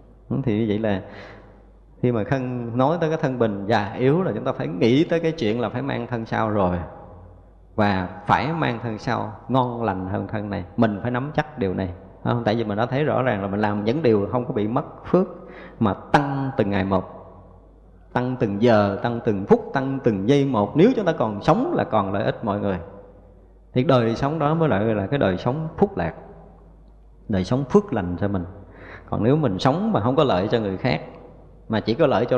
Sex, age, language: male, 20-39, Vietnamese